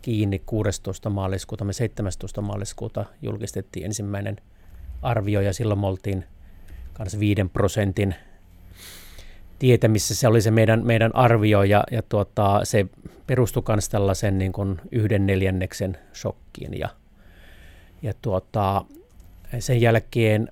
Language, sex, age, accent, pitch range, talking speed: Finnish, male, 30-49, native, 95-115 Hz, 115 wpm